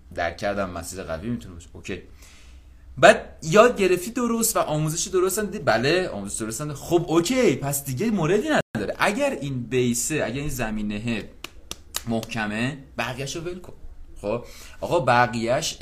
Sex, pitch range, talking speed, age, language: male, 105-140 Hz, 130 wpm, 30-49, English